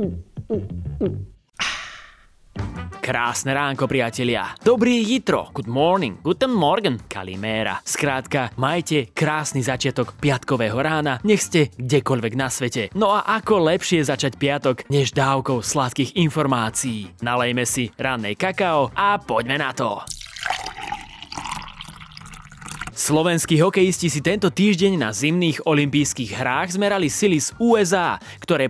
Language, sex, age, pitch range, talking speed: Slovak, male, 20-39, 130-175 Hz, 110 wpm